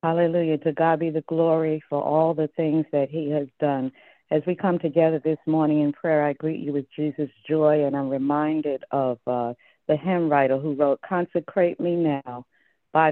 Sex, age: female, 60-79